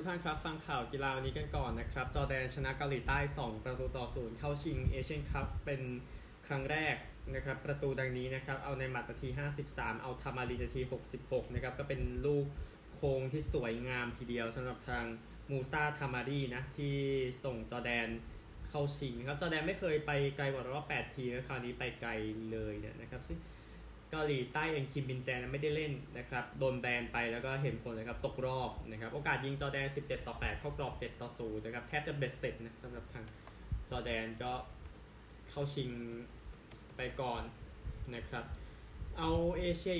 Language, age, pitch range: Thai, 20-39, 120-145 Hz